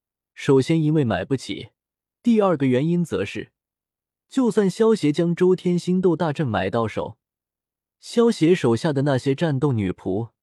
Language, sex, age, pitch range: Chinese, male, 20-39, 115-170 Hz